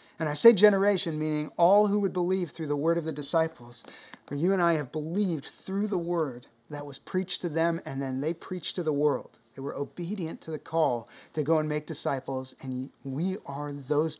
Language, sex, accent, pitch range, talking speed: English, male, American, 135-175 Hz, 215 wpm